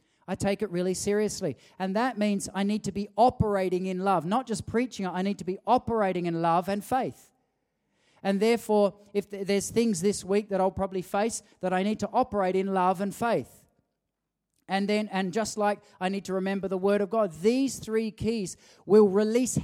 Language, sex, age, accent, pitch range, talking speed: English, male, 40-59, Australian, 185-230 Hz, 200 wpm